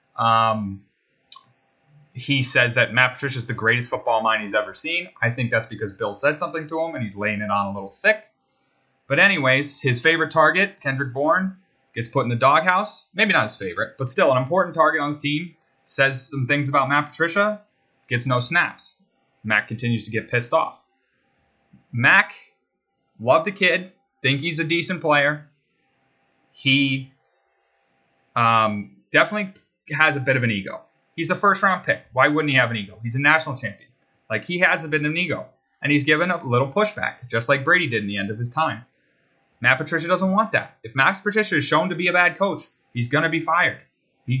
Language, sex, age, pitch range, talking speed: English, male, 30-49, 120-165 Hz, 200 wpm